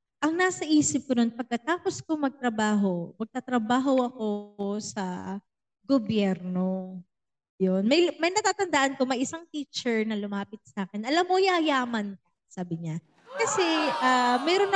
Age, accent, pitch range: 20-39, Filipino, 215-320 Hz